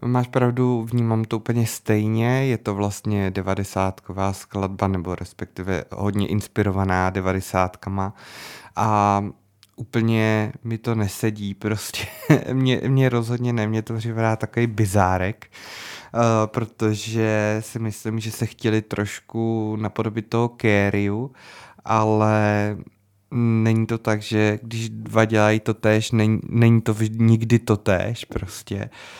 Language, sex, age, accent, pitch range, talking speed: Czech, male, 20-39, native, 105-120 Hz, 115 wpm